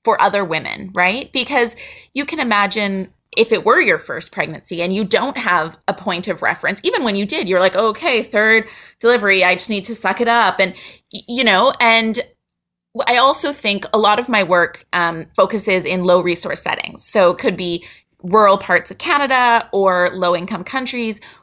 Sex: female